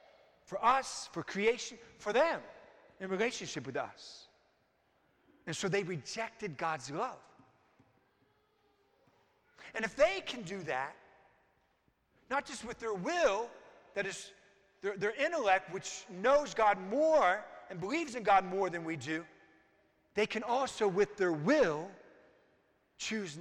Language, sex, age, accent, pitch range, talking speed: English, male, 50-69, American, 180-265 Hz, 130 wpm